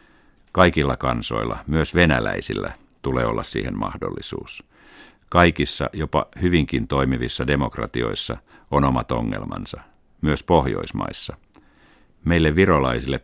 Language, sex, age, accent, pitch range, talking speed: Finnish, male, 50-69, native, 65-85 Hz, 90 wpm